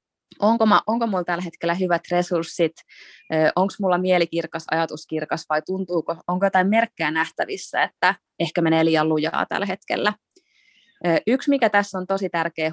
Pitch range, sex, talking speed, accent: 160-200 Hz, female, 140 wpm, native